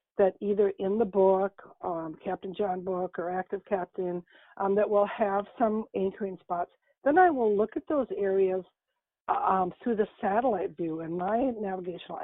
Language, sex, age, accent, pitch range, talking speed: English, female, 60-79, American, 185-210 Hz, 165 wpm